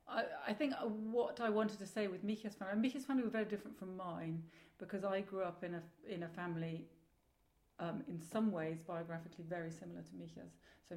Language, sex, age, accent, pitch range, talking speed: English, female, 40-59, British, 160-185 Hz, 200 wpm